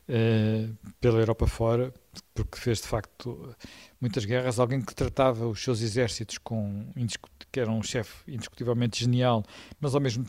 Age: 50-69